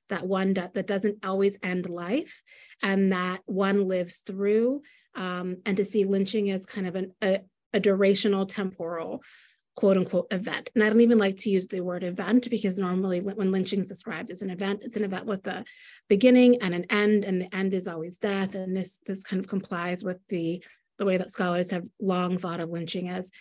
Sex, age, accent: female, 30-49, American